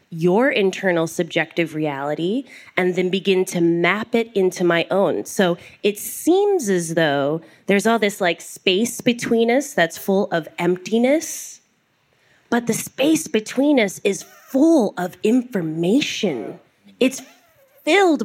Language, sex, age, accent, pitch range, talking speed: English, female, 20-39, American, 170-215 Hz, 130 wpm